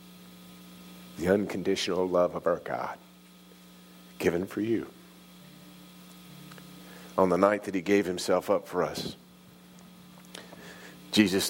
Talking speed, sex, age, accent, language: 100 wpm, male, 40-59, American, English